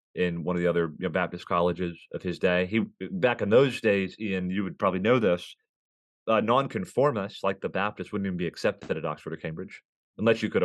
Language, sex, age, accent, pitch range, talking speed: English, male, 30-49, American, 90-115 Hz, 220 wpm